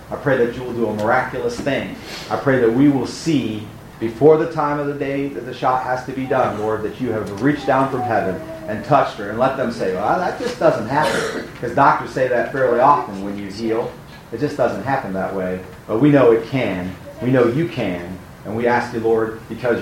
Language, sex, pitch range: English, male, 110-140 Hz